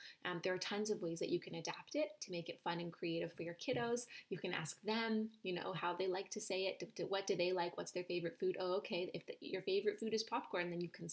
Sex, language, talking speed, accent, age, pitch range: female, English, 275 wpm, American, 20-39, 175-220 Hz